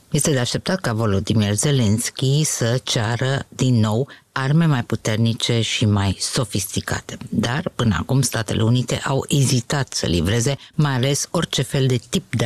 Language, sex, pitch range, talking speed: Romanian, female, 110-140 Hz, 155 wpm